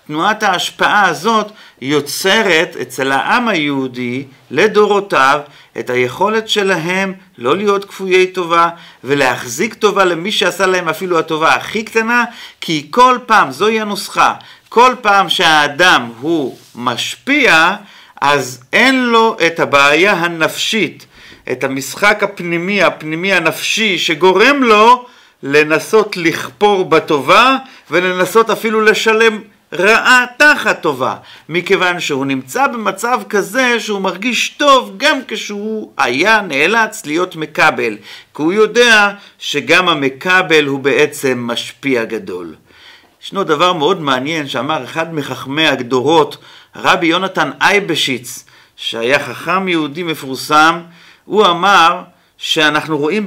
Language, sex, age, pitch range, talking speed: Hebrew, male, 40-59, 150-210 Hz, 110 wpm